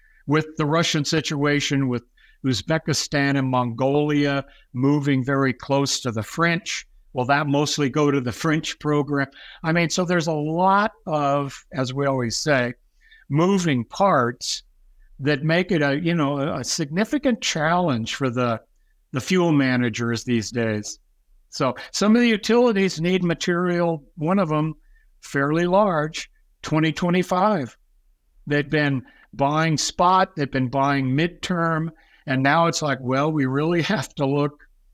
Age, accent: 60-79, American